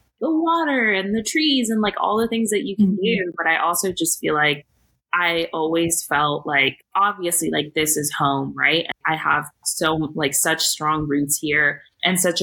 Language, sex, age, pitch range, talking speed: English, female, 20-39, 150-190 Hz, 195 wpm